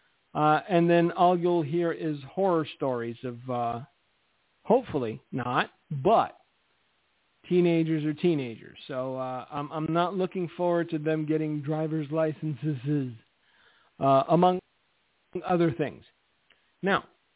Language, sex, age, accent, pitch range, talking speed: English, male, 50-69, American, 145-185 Hz, 120 wpm